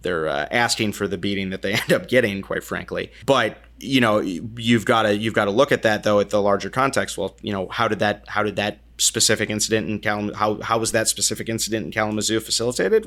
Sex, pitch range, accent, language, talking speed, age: male, 100-110 Hz, American, English, 240 wpm, 30-49